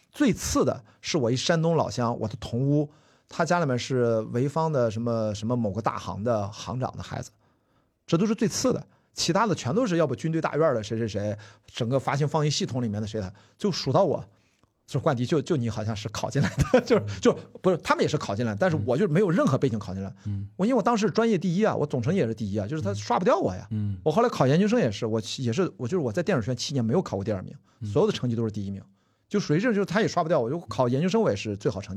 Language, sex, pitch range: Chinese, male, 110-155 Hz